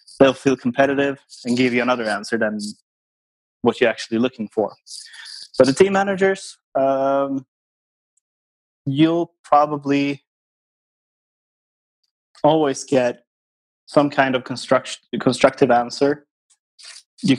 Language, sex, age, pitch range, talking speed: English, male, 20-39, 115-135 Hz, 105 wpm